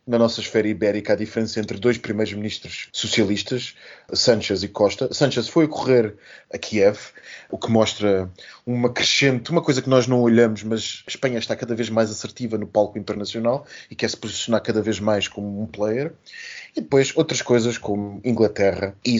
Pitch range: 105-130 Hz